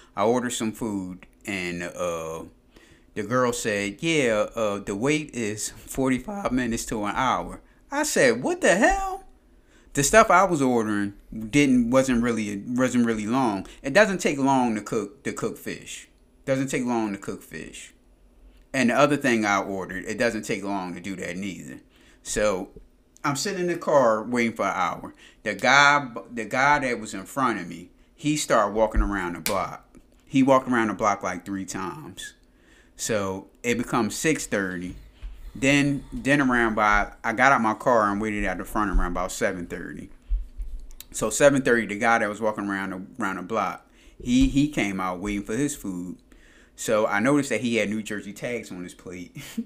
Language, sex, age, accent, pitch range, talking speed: English, male, 30-49, American, 100-145 Hz, 185 wpm